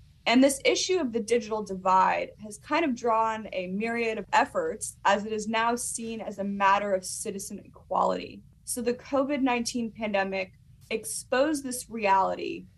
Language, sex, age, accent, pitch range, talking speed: English, female, 20-39, American, 195-240 Hz, 155 wpm